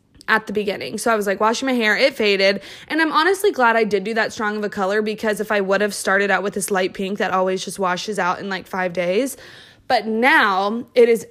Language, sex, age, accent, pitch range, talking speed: English, female, 20-39, American, 205-260 Hz, 255 wpm